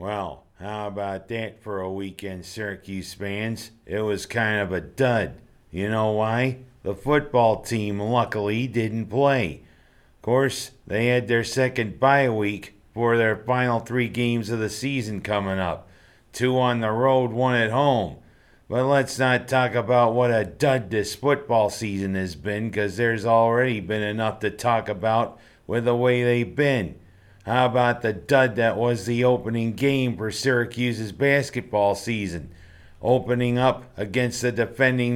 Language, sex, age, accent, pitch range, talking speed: English, male, 50-69, American, 105-125 Hz, 160 wpm